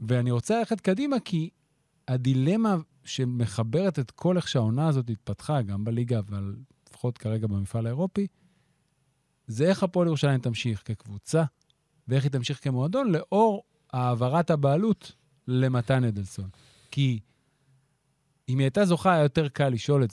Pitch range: 125-160 Hz